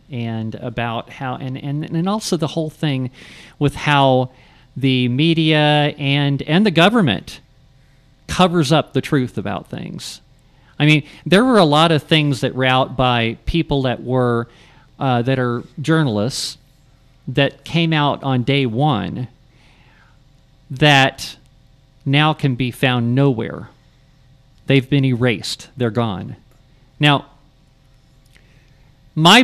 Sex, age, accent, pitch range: male, 40-59, American, 125-150 Hz